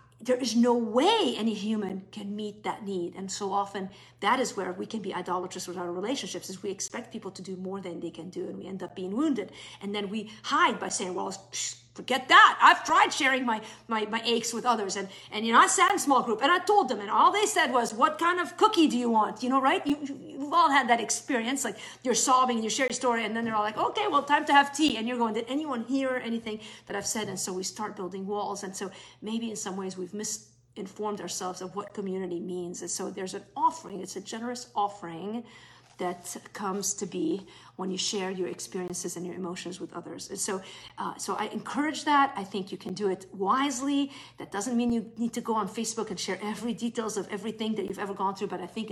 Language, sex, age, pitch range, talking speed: English, female, 50-69, 185-235 Hz, 245 wpm